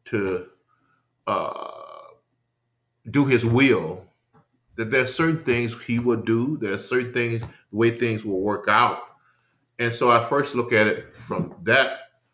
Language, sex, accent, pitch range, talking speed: English, male, American, 115-140 Hz, 155 wpm